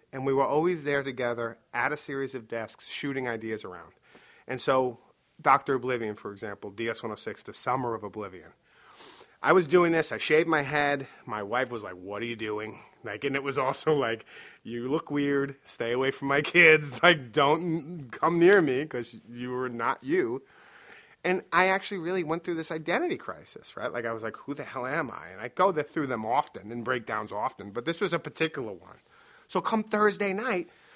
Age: 30-49